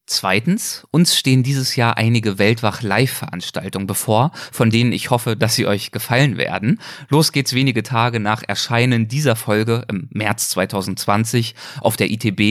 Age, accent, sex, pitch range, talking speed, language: 30-49, German, male, 105-135 Hz, 150 wpm, German